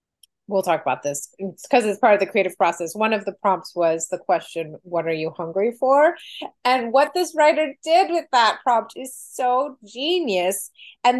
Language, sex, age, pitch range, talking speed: English, female, 30-49, 170-230 Hz, 195 wpm